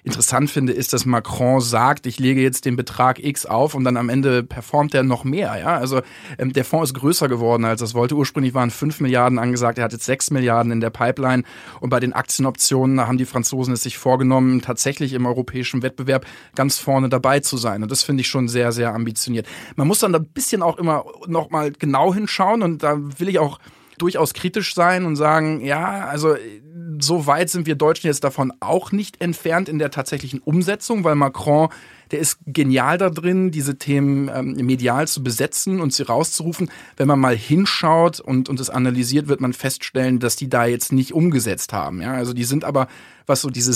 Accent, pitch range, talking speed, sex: German, 125-150 Hz, 210 wpm, male